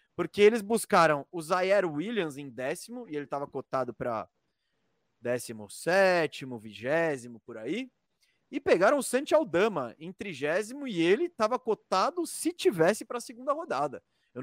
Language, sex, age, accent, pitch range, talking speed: Portuguese, male, 20-39, Brazilian, 145-215 Hz, 150 wpm